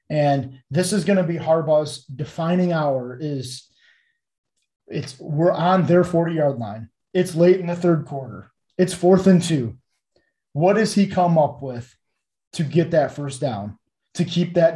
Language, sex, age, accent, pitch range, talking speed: English, male, 20-39, American, 140-170 Hz, 165 wpm